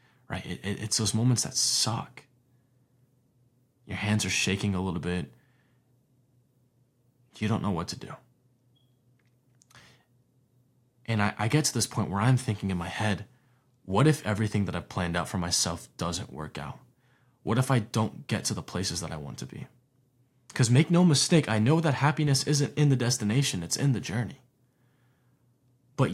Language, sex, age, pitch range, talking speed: English, male, 20-39, 105-130 Hz, 170 wpm